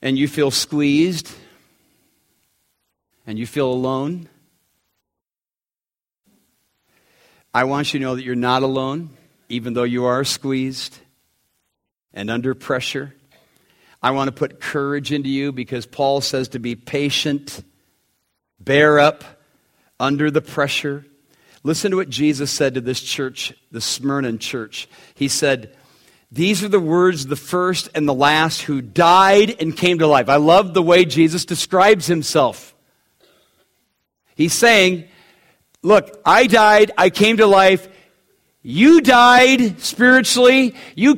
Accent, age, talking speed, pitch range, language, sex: American, 50-69, 135 wpm, 130-190 Hz, English, male